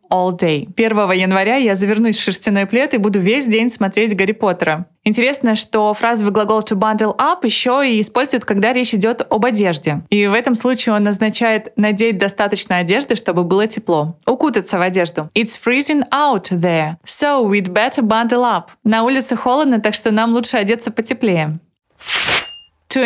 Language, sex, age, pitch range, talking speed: Russian, female, 20-39, 200-240 Hz, 170 wpm